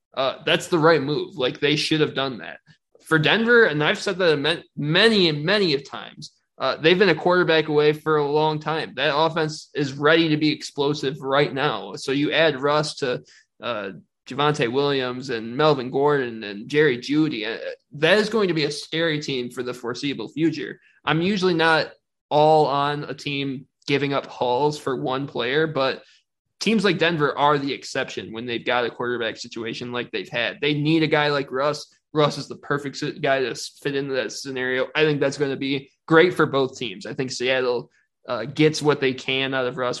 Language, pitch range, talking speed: English, 135-160 Hz, 200 wpm